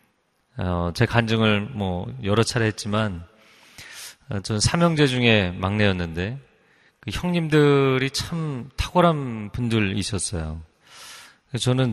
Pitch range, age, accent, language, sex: 100-135 Hz, 40-59, native, Korean, male